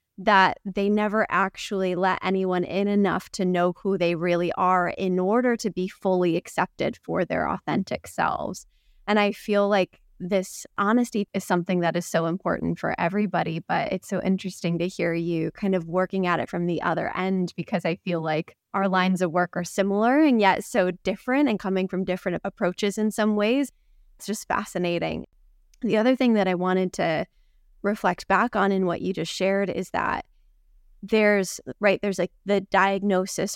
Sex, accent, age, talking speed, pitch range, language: female, American, 20-39, 180 wpm, 180-205 Hz, English